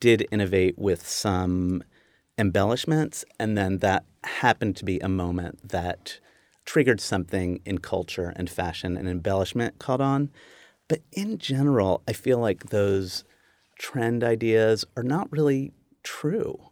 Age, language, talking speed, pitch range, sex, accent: 30-49, English, 135 wpm, 95-125 Hz, male, American